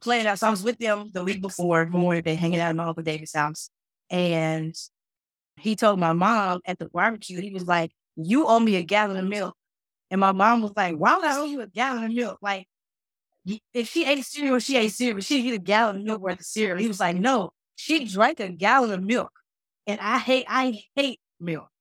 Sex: female